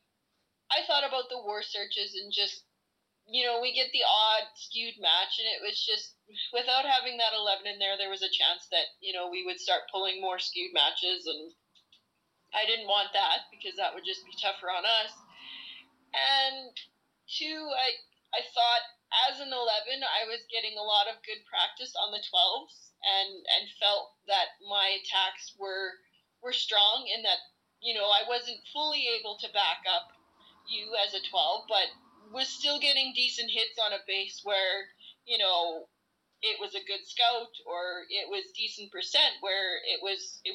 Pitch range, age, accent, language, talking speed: 200-275 Hz, 30-49, American, English, 180 wpm